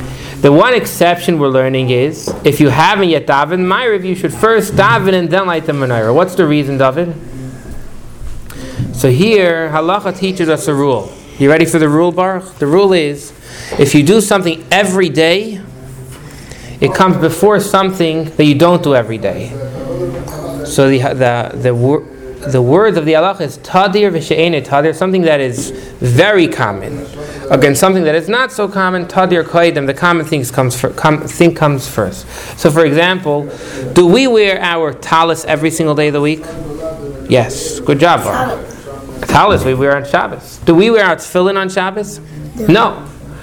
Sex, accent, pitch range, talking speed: male, American, 140-185 Hz, 170 wpm